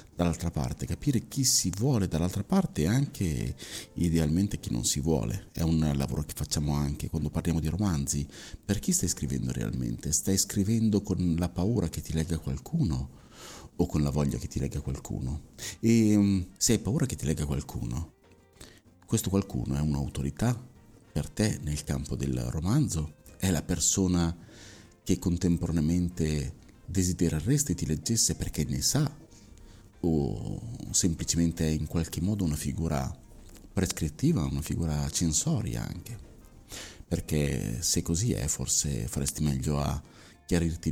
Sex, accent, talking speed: male, native, 145 wpm